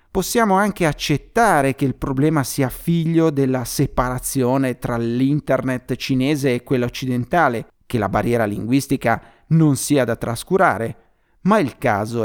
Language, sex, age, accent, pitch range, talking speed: Italian, male, 30-49, native, 125-170 Hz, 130 wpm